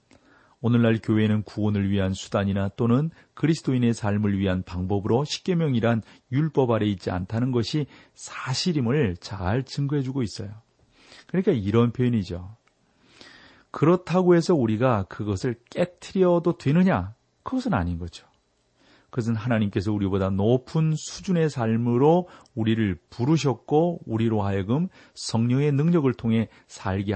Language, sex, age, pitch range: Korean, male, 40-59, 100-130 Hz